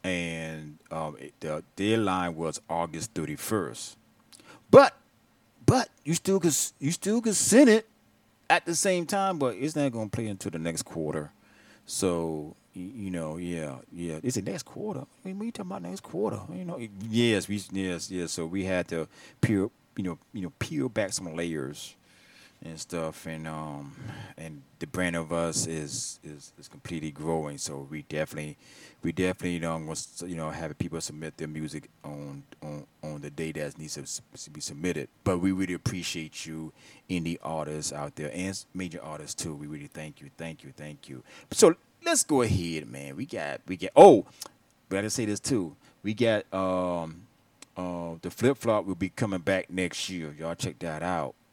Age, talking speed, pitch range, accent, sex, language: 30-49, 185 wpm, 80-100 Hz, American, male, English